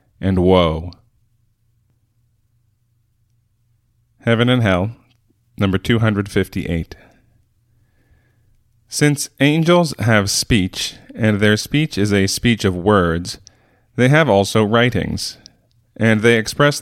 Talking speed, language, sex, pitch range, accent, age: 95 wpm, English, male, 100-115 Hz, American, 30-49